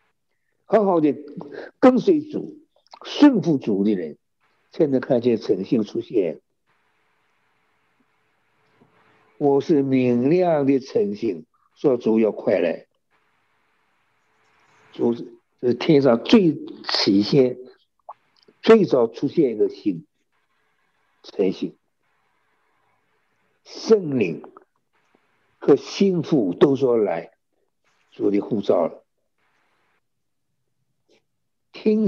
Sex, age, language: male, 60-79, Chinese